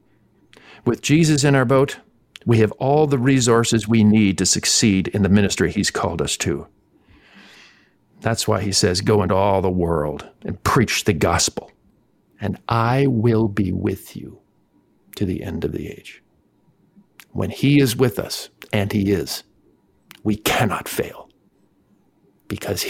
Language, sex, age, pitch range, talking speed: English, male, 50-69, 100-135 Hz, 150 wpm